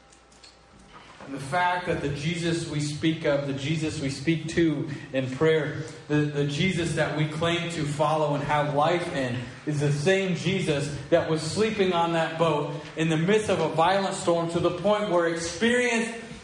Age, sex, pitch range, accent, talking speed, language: 40-59, male, 130-170 Hz, American, 185 wpm, English